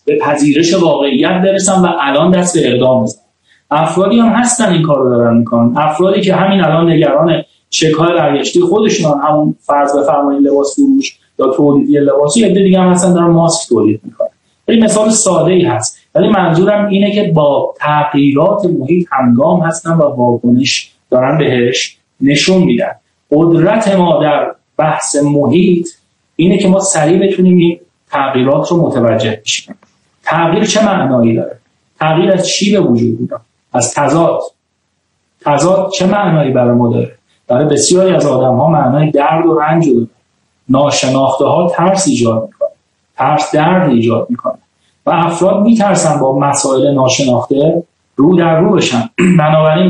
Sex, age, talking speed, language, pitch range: male, 30-49, 150 wpm, Persian, 140-185 Hz